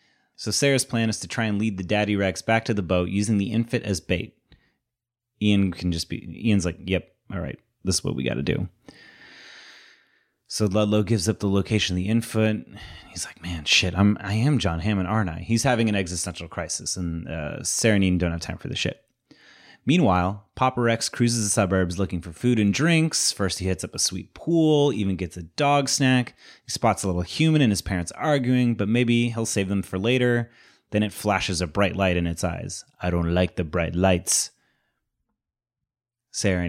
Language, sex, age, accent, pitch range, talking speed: English, male, 30-49, American, 90-115 Hz, 210 wpm